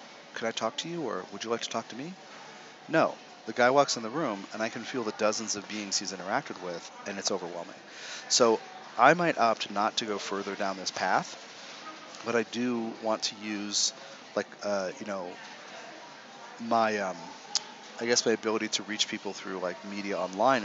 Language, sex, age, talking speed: English, male, 40-59, 200 wpm